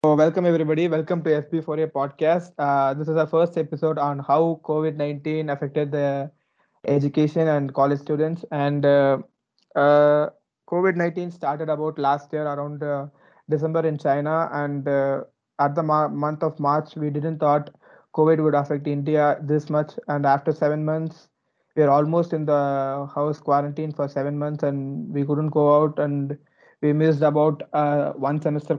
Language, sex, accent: English, male, Indian